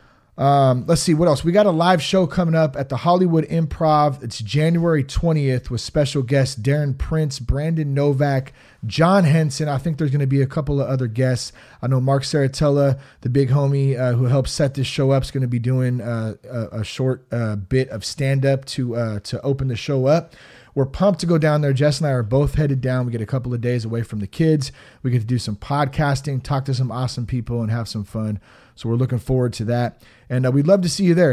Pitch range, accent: 125-150 Hz, American